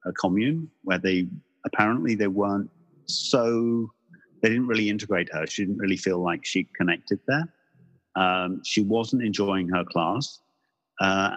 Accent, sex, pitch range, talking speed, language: British, male, 85-110 Hz, 150 wpm, English